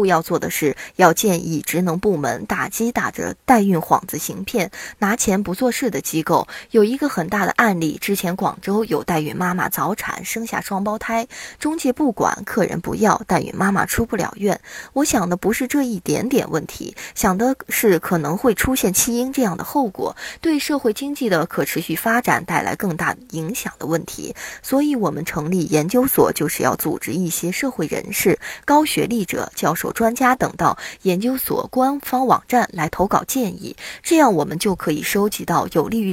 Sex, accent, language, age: female, native, Chinese, 20-39